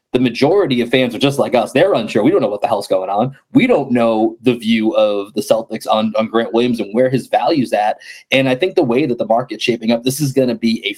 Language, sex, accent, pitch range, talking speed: English, male, American, 110-175 Hz, 280 wpm